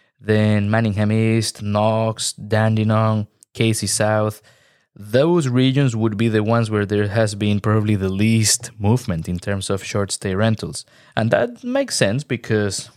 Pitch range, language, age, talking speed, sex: 100-120 Hz, English, 20-39, 145 wpm, male